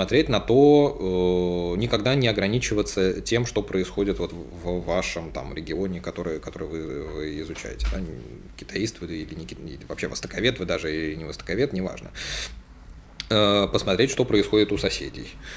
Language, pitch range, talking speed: Russian, 85-105 Hz, 130 wpm